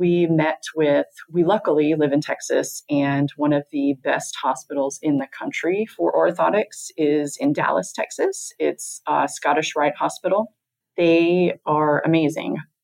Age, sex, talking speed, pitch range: 30-49, female, 145 wpm, 140-170 Hz